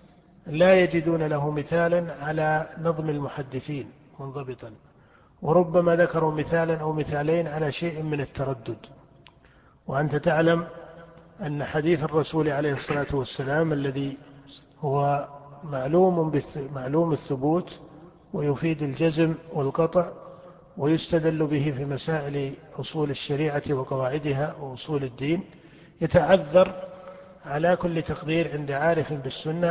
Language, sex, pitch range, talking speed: Arabic, male, 145-170 Hz, 95 wpm